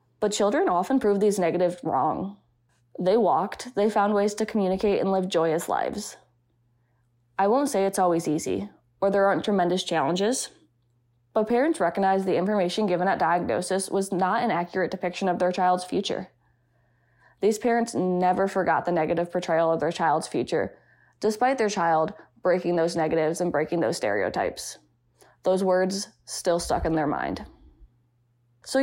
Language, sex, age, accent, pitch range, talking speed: English, female, 20-39, American, 165-195 Hz, 155 wpm